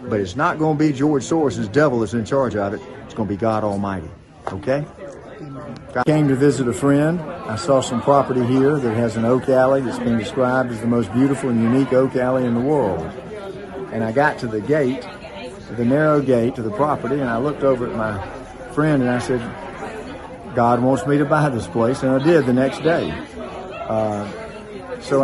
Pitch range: 115-140 Hz